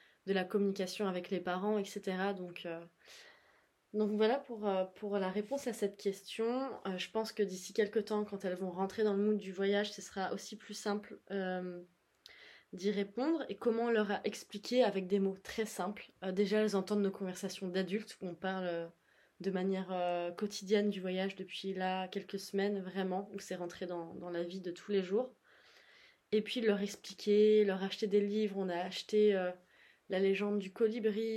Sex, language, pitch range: female, French, 185-210 Hz